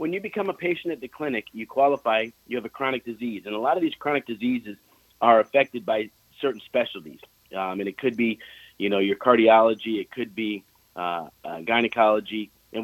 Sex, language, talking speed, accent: male, English, 200 wpm, American